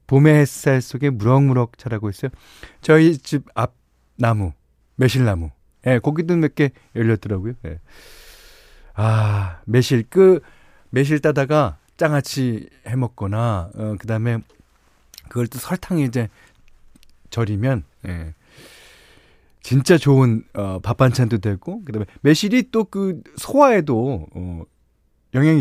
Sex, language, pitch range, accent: male, Korean, 100-145 Hz, native